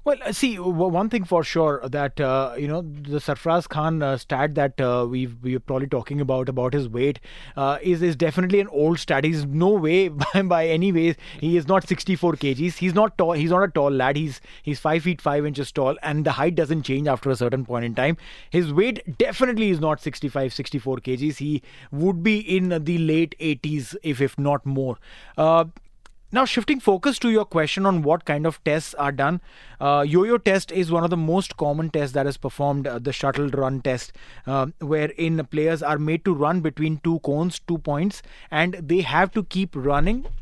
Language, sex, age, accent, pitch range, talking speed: English, male, 30-49, Indian, 140-180 Hz, 205 wpm